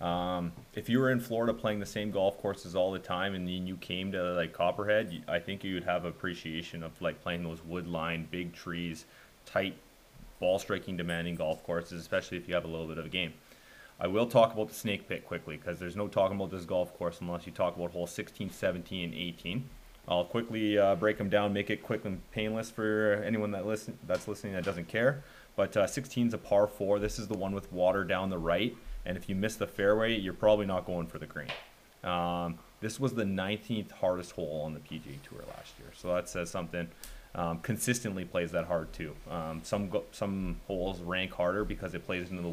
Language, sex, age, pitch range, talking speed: English, male, 30-49, 85-105 Hz, 225 wpm